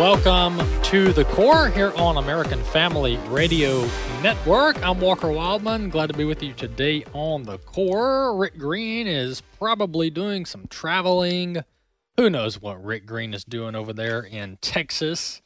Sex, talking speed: male, 155 wpm